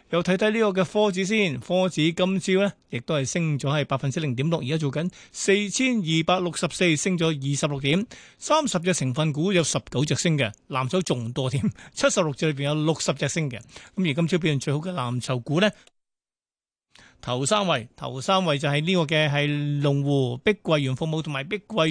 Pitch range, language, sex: 140-185 Hz, Chinese, male